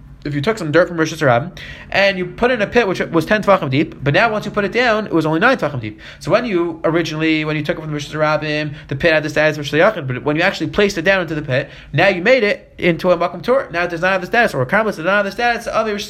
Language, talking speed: English, 320 wpm